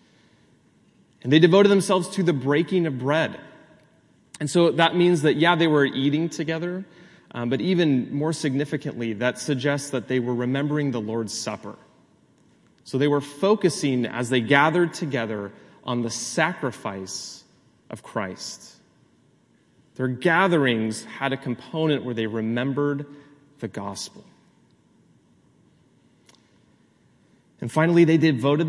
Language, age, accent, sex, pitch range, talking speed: English, 30-49, American, male, 125-170 Hz, 125 wpm